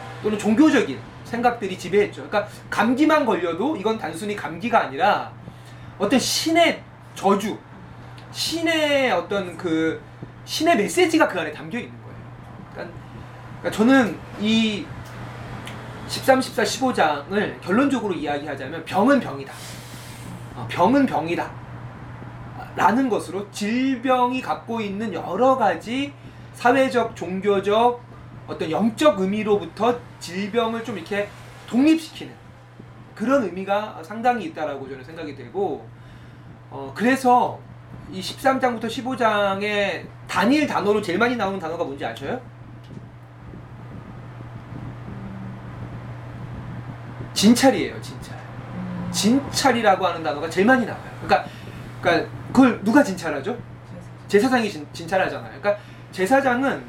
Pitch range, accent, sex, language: 165-255 Hz, native, male, Korean